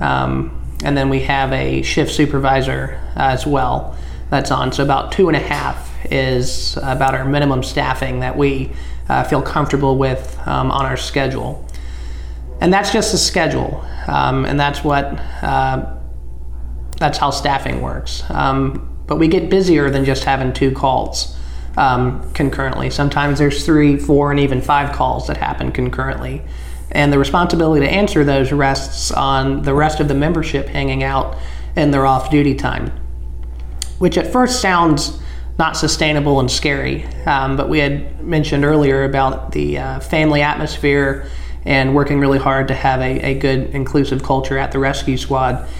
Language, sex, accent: English, male, American